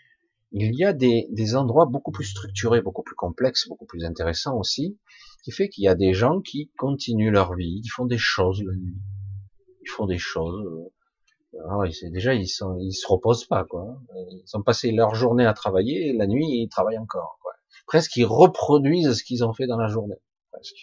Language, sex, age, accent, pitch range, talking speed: French, male, 40-59, French, 100-160 Hz, 205 wpm